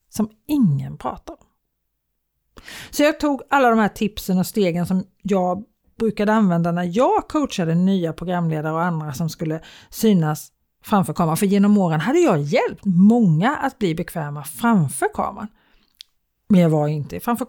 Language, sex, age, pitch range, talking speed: Swedish, female, 40-59, 165-230 Hz, 160 wpm